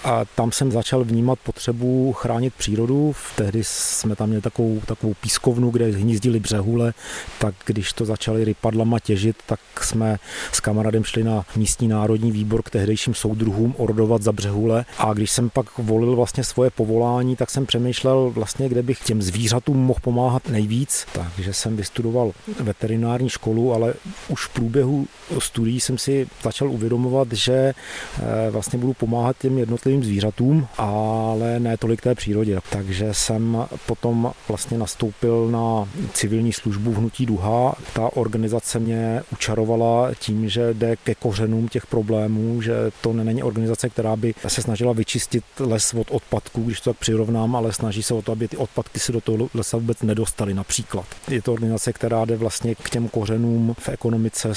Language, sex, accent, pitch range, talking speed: Czech, male, native, 110-120 Hz, 160 wpm